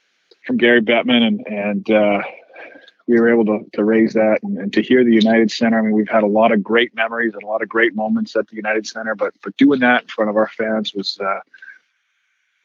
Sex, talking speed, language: male, 235 wpm, English